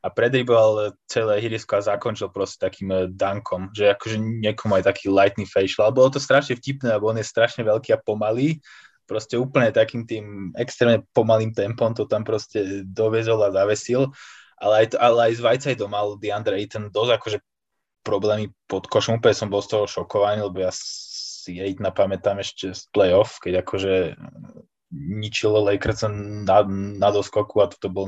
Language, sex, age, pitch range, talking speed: Slovak, male, 20-39, 95-115 Hz, 170 wpm